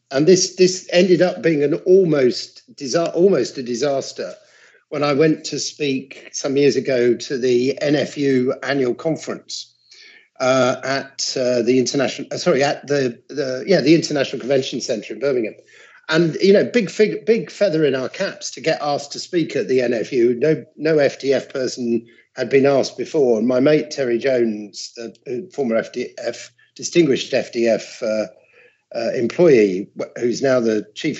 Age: 50-69